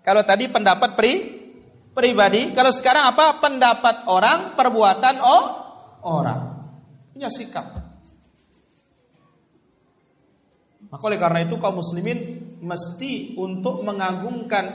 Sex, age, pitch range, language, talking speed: male, 40-59, 225-315 Hz, Indonesian, 100 wpm